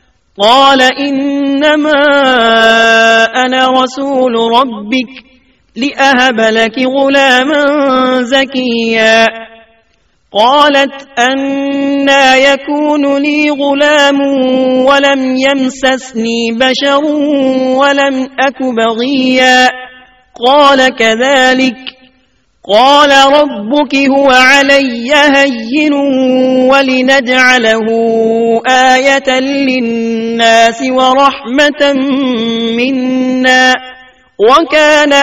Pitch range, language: 255-280 Hz, Urdu